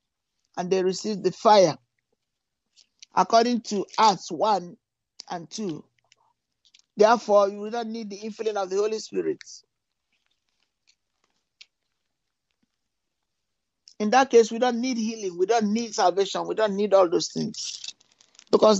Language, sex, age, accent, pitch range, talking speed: English, male, 60-79, Nigerian, 180-225 Hz, 125 wpm